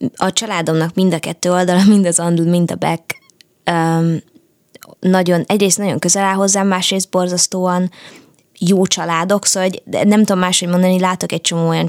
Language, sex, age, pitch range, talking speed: Hungarian, female, 20-39, 165-185 Hz, 170 wpm